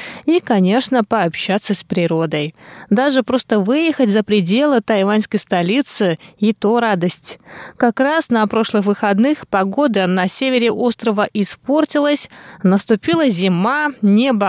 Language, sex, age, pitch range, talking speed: Russian, female, 20-39, 190-255 Hz, 115 wpm